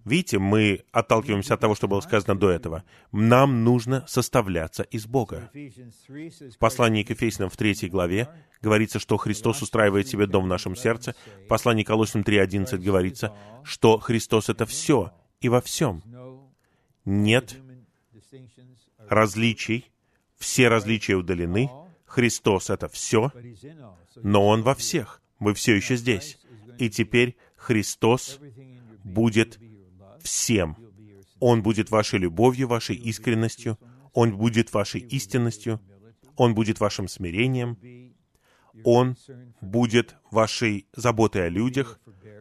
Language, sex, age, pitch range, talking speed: Russian, male, 30-49, 105-125 Hz, 120 wpm